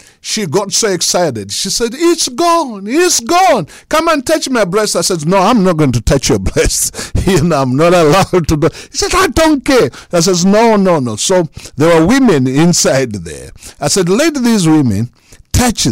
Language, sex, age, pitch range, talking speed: English, male, 60-79, 130-215 Hz, 205 wpm